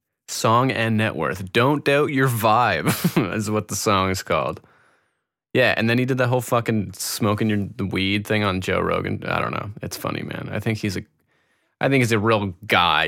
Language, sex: English, male